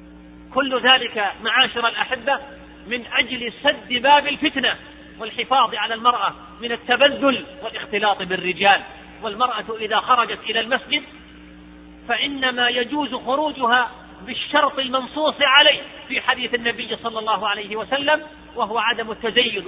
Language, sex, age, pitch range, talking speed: Arabic, male, 40-59, 205-260 Hz, 115 wpm